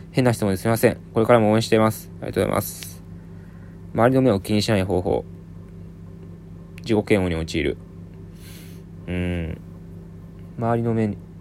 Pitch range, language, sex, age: 85-90 Hz, Japanese, male, 20-39